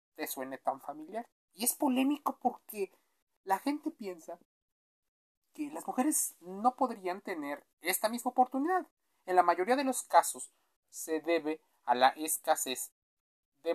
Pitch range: 125-195 Hz